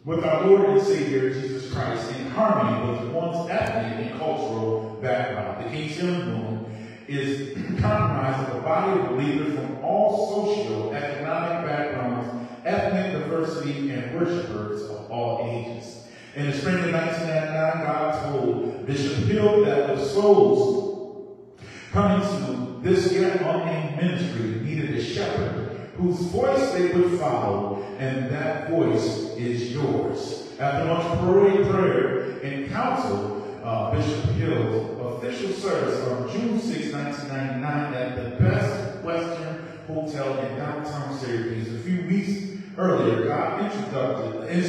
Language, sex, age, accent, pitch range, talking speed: English, female, 20-39, American, 130-185 Hz, 130 wpm